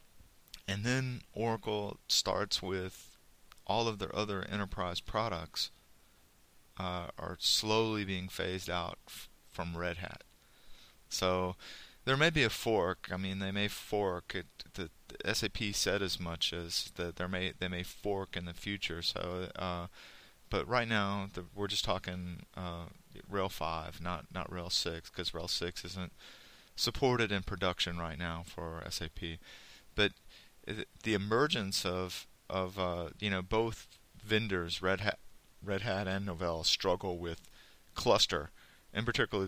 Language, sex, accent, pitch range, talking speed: English, male, American, 85-100 Hz, 145 wpm